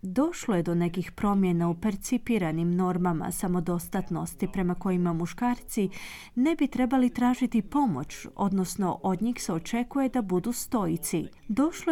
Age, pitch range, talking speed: 30-49, 180-245 Hz, 130 wpm